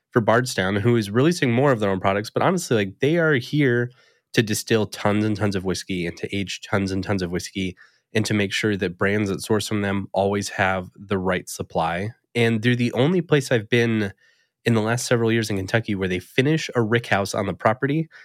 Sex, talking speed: male, 220 wpm